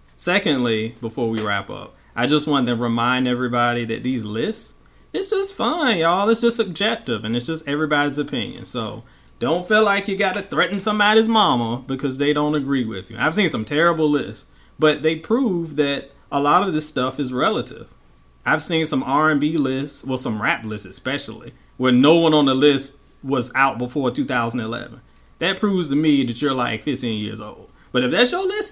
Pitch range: 120-155 Hz